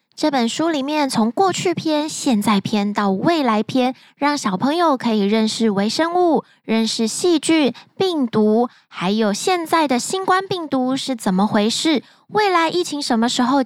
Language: Chinese